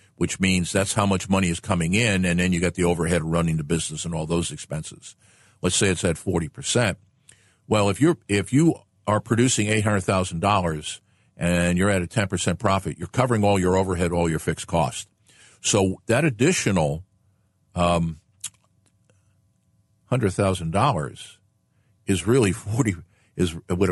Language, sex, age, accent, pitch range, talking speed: English, male, 50-69, American, 90-105 Hz, 155 wpm